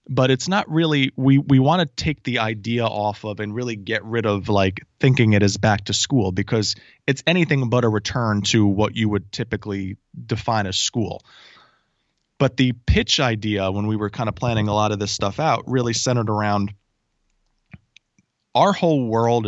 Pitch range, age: 105-130 Hz, 20-39